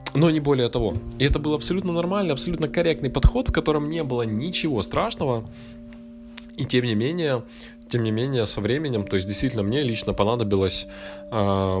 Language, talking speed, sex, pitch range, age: Russian, 175 wpm, male, 100-125 Hz, 20-39